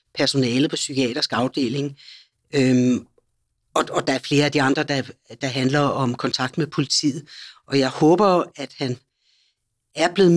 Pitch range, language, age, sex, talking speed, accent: 130-165 Hz, Danish, 60-79, female, 150 wpm, native